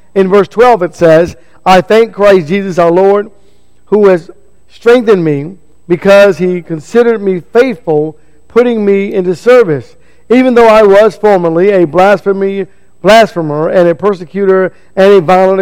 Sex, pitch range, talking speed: male, 180-220 Hz, 145 wpm